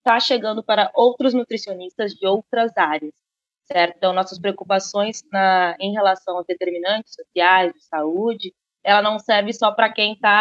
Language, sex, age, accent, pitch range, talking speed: Portuguese, female, 20-39, Brazilian, 195-225 Hz, 155 wpm